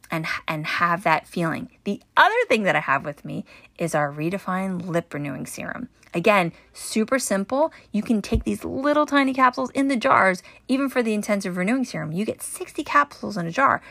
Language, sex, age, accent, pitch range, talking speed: English, female, 30-49, American, 165-225 Hz, 195 wpm